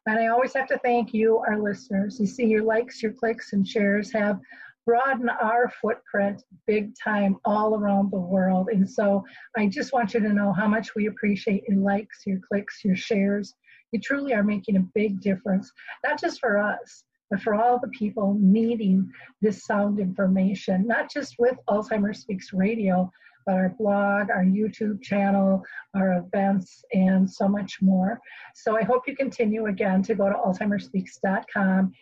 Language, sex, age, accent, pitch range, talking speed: English, female, 40-59, American, 195-225 Hz, 175 wpm